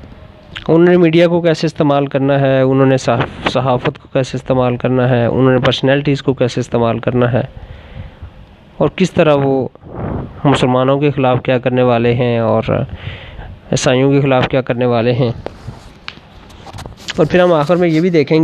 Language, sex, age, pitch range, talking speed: Urdu, male, 20-39, 125-155 Hz, 165 wpm